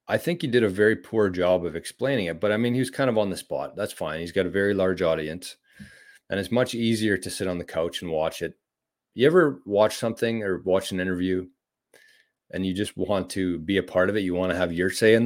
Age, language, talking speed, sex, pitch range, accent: 30-49, English, 260 wpm, male, 95-120 Hz, American